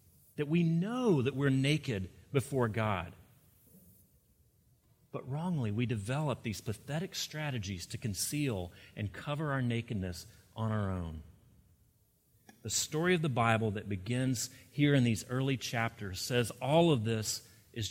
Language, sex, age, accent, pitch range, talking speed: English, male, 30-49, American, 100-140 Hz, 135 wpm